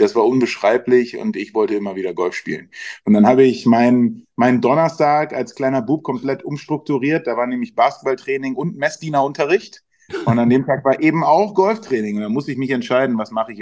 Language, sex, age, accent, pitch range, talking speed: German, male, 20-39, German, 105-130 Hz, 200 wpm